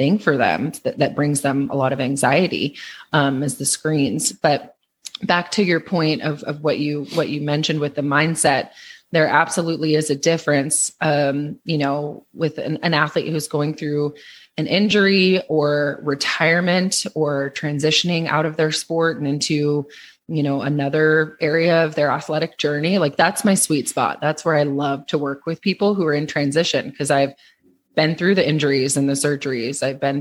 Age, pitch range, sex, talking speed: 20-39, 145-165 Hz, female, 185 wpm